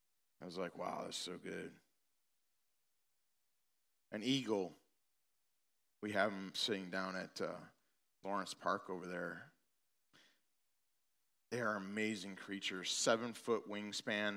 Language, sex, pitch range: English, male, 95-115 Hz